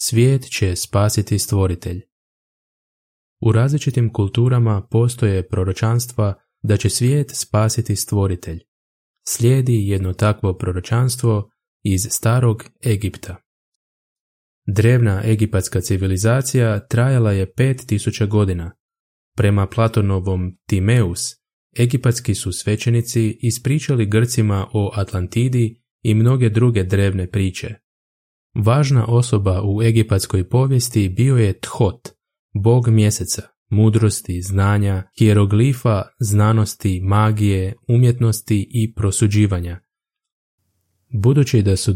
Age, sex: 20-39, male